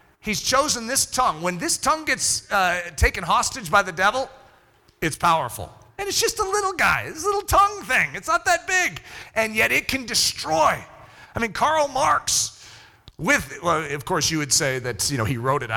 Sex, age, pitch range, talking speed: male, 40-59, 195-315 Hz, 200 wpm